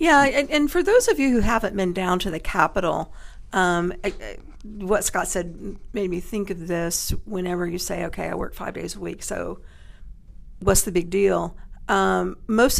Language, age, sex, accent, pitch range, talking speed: English, 50-69, female, American, 175-210 Hz, 195 wpm